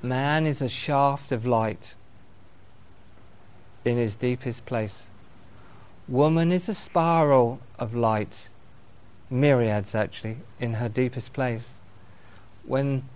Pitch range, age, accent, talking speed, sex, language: 105-140 Hz, 40-59, British, 105 wpm, male, English